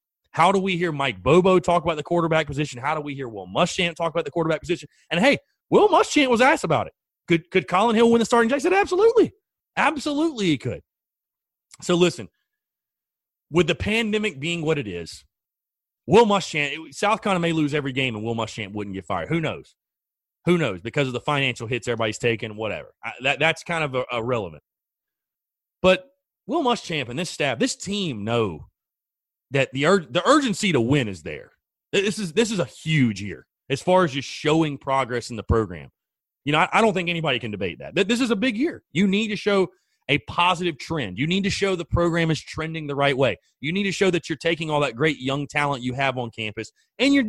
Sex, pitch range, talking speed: male, 135-200 Hz, 220 wpm